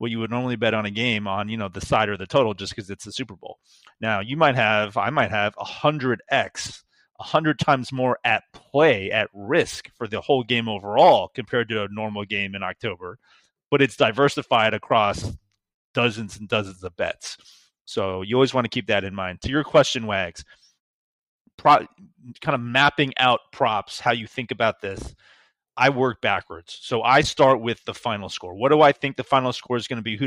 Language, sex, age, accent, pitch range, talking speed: English, male, 30-49, American, 100-130 Hz, 205 wpm